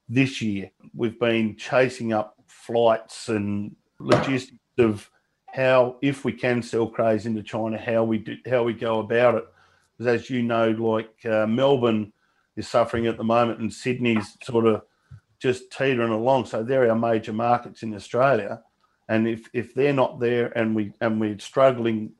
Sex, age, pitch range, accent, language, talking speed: male, 50-69, 110-125 Hz, Australian, English, 170 wpm